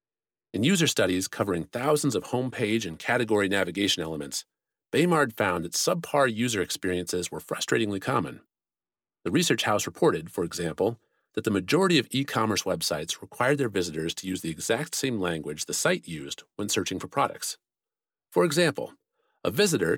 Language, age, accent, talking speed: English, 40-59, American, 155 wpm